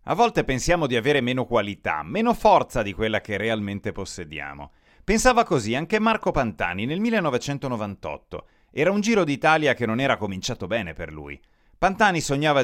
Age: 30-49